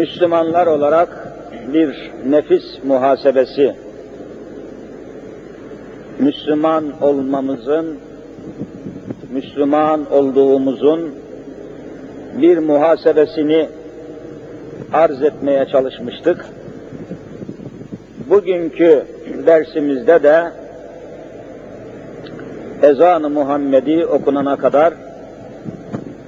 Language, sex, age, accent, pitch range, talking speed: Turkish, male, 50-69, native, 140-165 Hz, 50 wpm